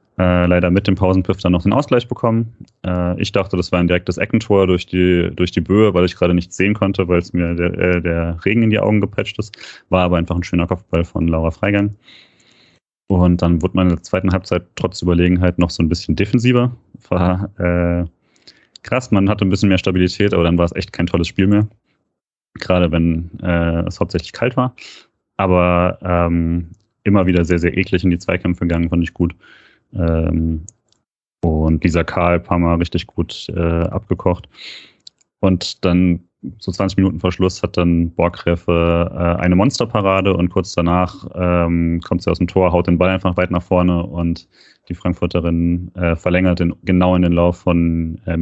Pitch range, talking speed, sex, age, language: 85-95 Hz, 185 wpm, male, 30-49, German